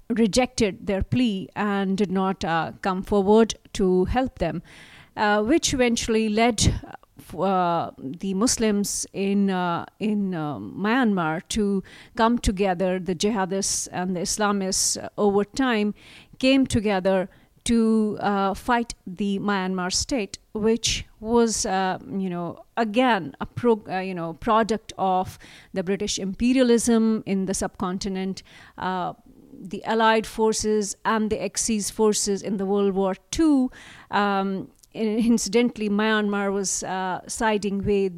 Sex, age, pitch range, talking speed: female, 50-69, 190-225 Hz, 130 wpm